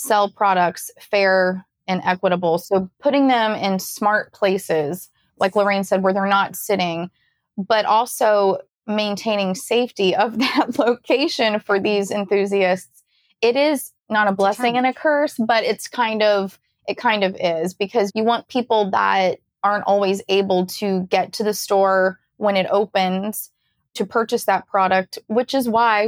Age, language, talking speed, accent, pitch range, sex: 20-39, English, 155 wpm, American, 185-220 Hz, female